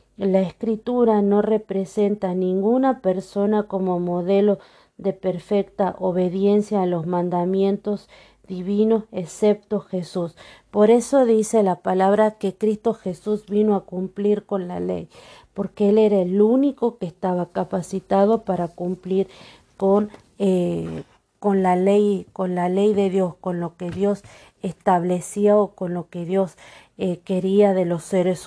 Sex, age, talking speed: female, 40-59, 140 wpm